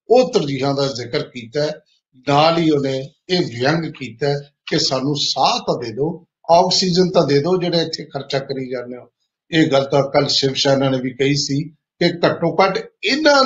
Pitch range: 140-180 Hz